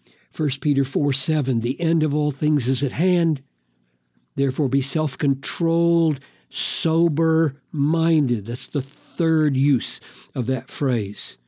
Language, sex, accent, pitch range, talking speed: English, male, American, 115-165 Hz, 115 wpm